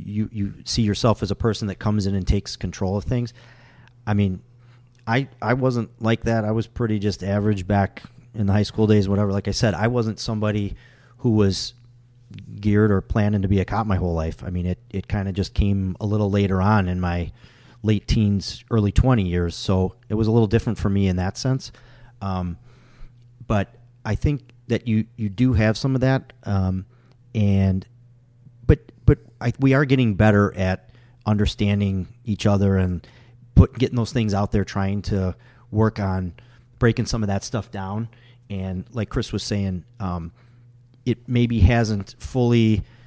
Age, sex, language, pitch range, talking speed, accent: 40-59, male, English, 100-120 Hz, 185 wpm, American